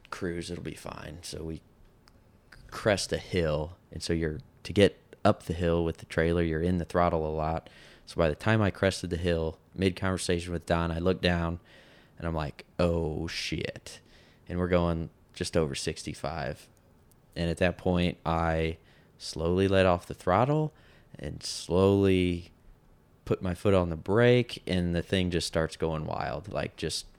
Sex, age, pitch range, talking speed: male, 20-39, 80-95 Hz, 175 wpm